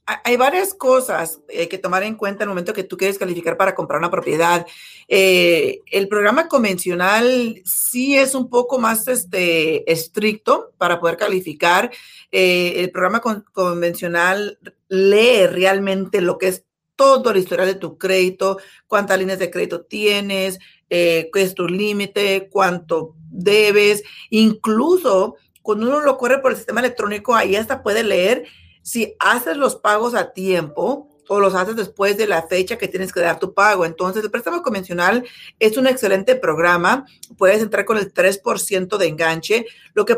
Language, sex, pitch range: Spanish, female, 185-230 Hz